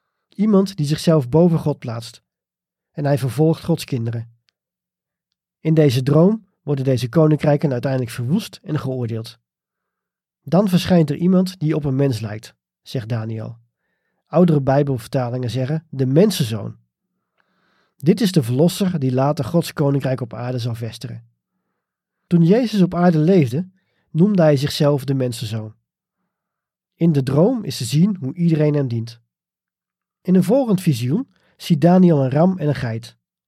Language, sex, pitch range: Dutch, male, 130-175 Hz